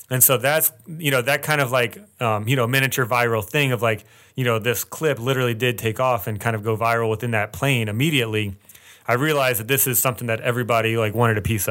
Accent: American